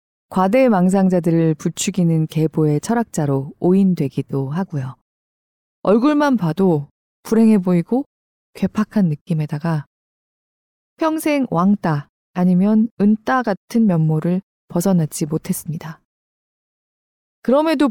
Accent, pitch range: native, 160-220 Hz